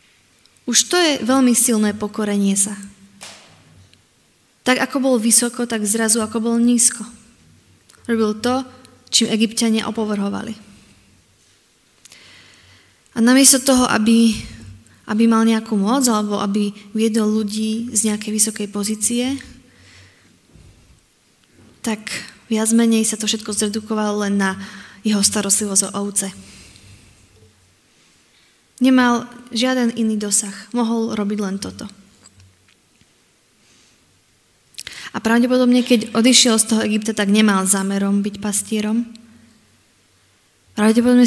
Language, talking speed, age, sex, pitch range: Slovak, 105 wpm, 20-39, female, 205-235 Hz